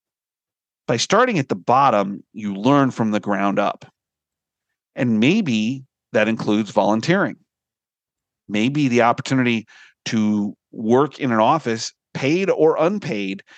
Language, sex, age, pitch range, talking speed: English, male, 40-59, 110-145 Hz, 120 wpm